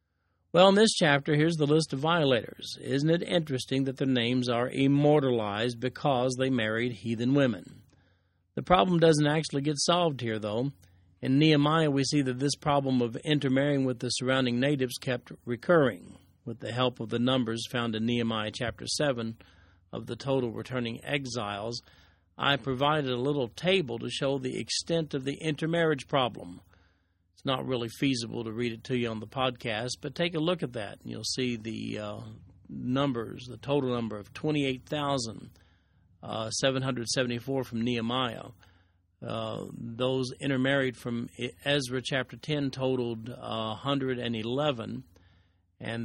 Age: 40-59